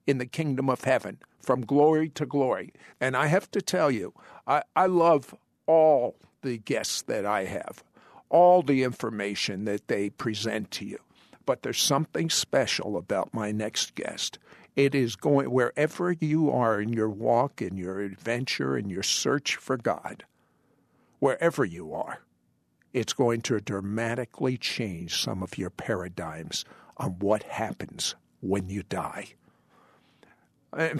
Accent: American